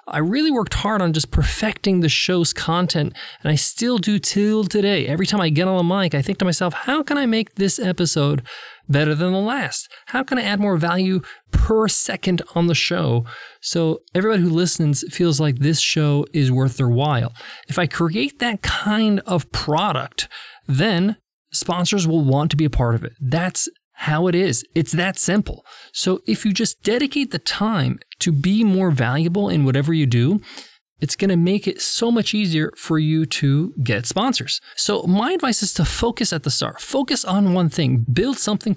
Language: English